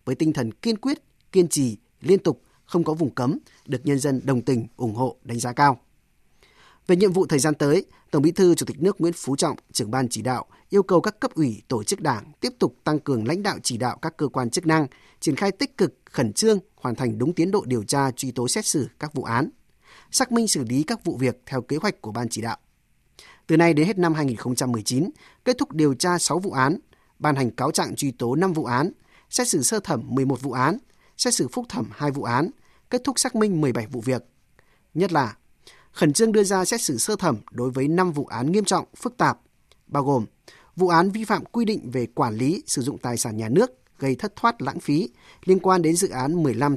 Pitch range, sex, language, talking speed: 130-185 Hz, male, Vietnamese, 240 wpm